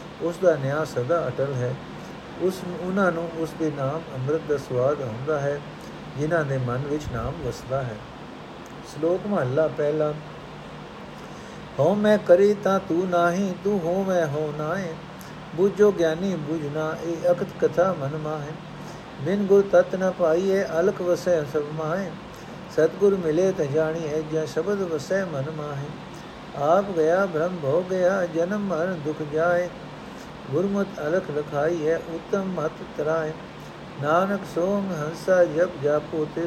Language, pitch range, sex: Punjabi, 150-180 Hz, male